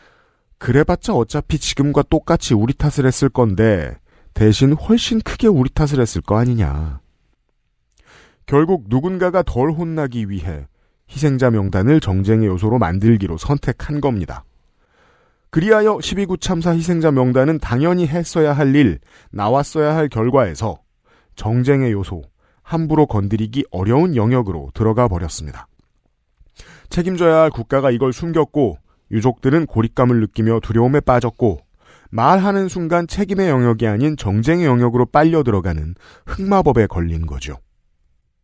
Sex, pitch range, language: male, 105-155 Hz, Korean